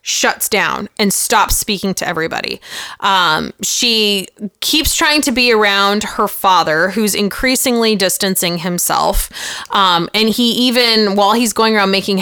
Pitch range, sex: 185-220 Hz, female